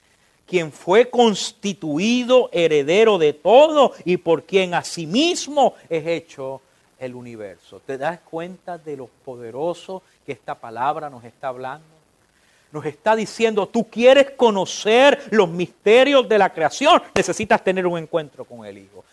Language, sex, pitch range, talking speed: English, male, 145-210 Hz, 145 wpm